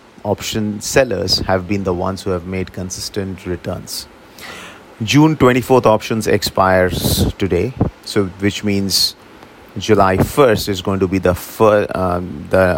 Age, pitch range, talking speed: 30-49, 90-110 Hz, 135 wpm